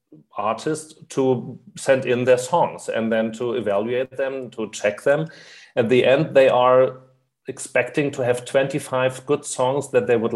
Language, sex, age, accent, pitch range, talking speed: English, male, 30-49, German, 115-135 Hz, 160 wpm